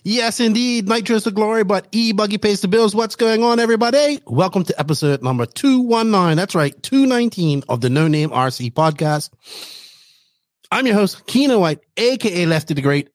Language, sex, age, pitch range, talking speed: English, male, 30-49, 140-180 Hz, 170 wpm